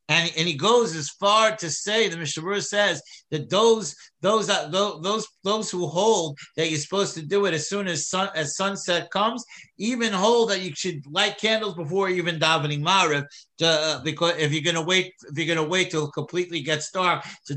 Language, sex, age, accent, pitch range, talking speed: English, male, 60-79, American, 145-185 Hz, 200 wpm